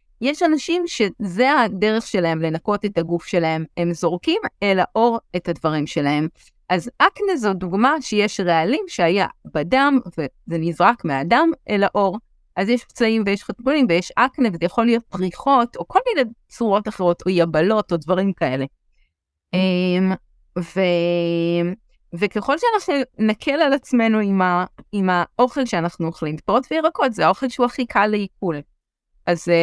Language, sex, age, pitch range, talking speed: Hebrew, female, 30-49, 175-245 Hz, 140 wpm